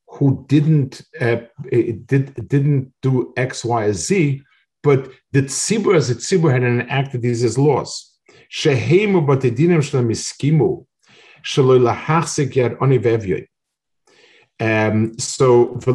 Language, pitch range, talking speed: English, 120-145 Hz, 55 wpm